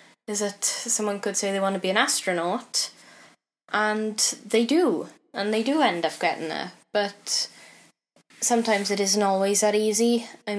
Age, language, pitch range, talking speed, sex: 10-29, English, 180-205 Hz, 165 wpm, female